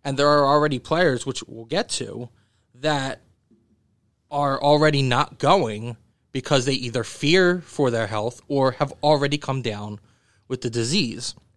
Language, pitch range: English, 115-140 Hz